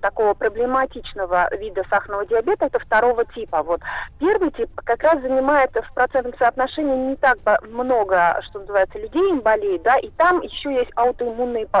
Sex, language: female, Russian